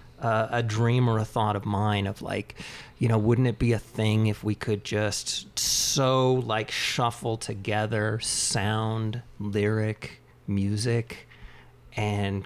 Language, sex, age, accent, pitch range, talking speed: English, male, 40-59, American, 110-135 Hz, 140 wpm